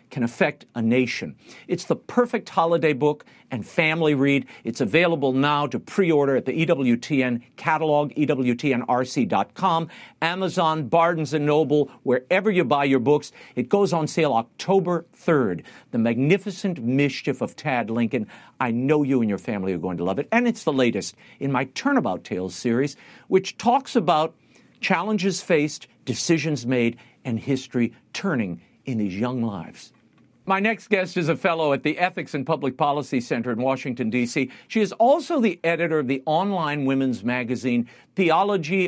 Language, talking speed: English, 160 wpm